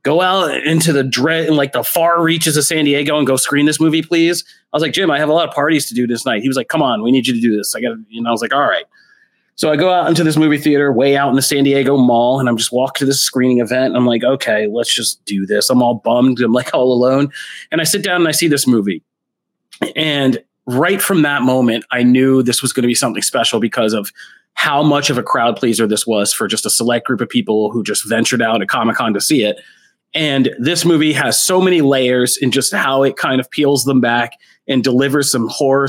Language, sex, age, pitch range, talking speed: English, male, 30-49, 125-160 Hz, 270 wpm